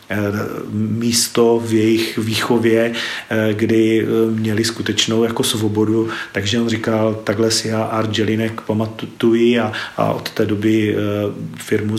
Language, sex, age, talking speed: Czech, male, 40-59, 115 wpm